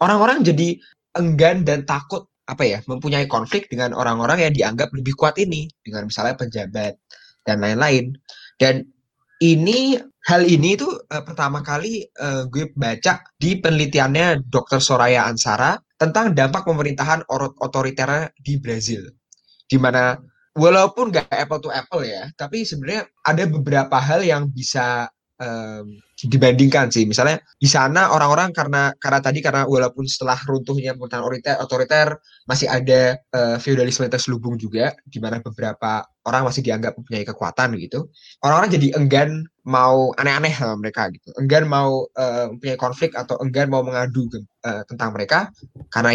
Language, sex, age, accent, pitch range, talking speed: Indonesian, male, 20-39, native, 125-150 Hz, 140 wpm